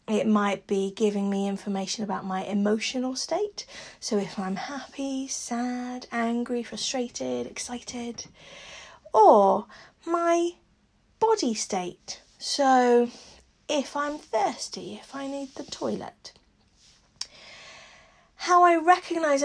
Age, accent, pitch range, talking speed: 30-49, British, 210-275 Hz, 105 wpm